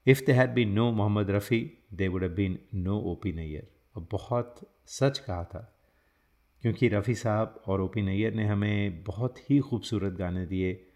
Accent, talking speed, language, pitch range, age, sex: native, 175 wpm, Hindi, 95-115 Hz, 30-49, male